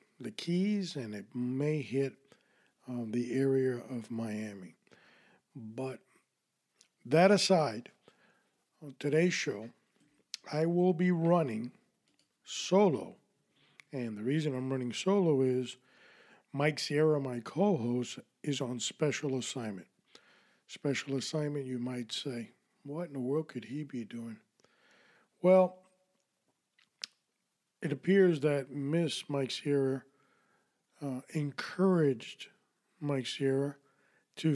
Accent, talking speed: American, 110 wpm